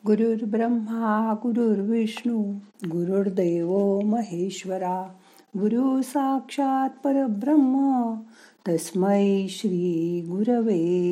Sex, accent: female, native